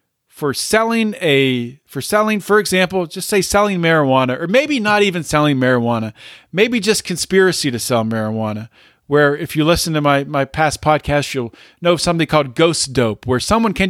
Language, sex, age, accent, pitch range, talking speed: English, male, 40-59, American, 140-185 Hz, 180 wpm